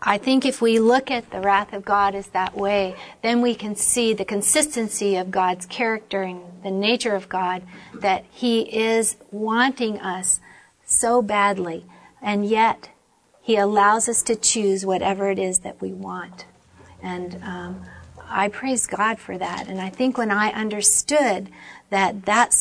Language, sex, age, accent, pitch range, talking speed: English, female, 50-69, American, 195-235 Hz, 165 wpm